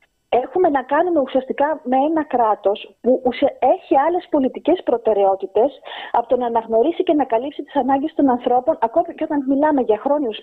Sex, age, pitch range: female, 30-49, 225-315 Hz